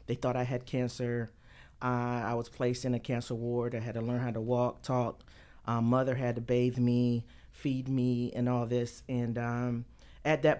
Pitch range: 120-130 Hz